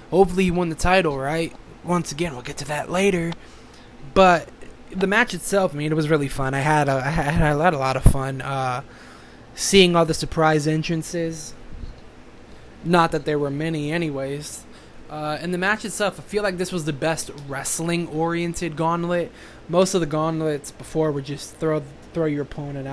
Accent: American